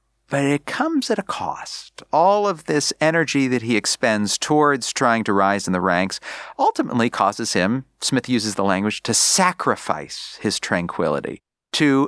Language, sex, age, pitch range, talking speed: English, male, 40-59, 125-200 Hz, 160 wpm